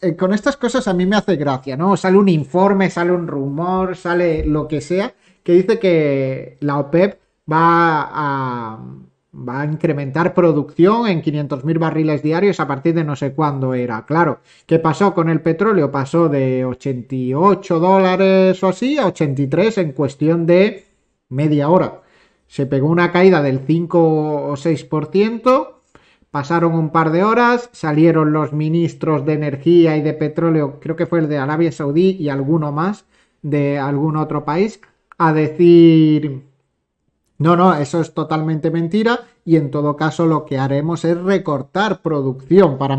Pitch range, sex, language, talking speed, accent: 145-175 Hz, male, Spanish, 160 wpm, Spanish